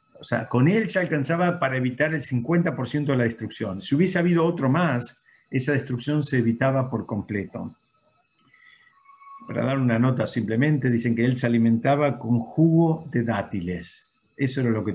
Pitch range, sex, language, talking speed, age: 115-140 Hz, male, Spanish, 170 wpm, 50-69